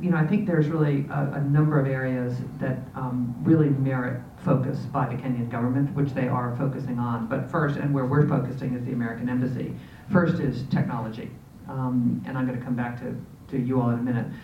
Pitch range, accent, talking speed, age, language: 125-150 Hz, American, 210 wpm, 50-69, English